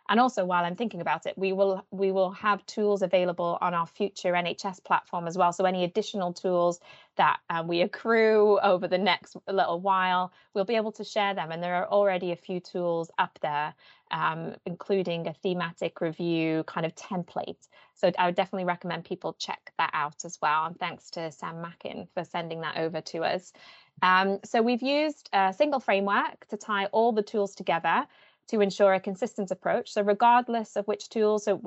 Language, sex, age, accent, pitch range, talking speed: English, female, 20-39, British, 175-210 Hz, 195 wpm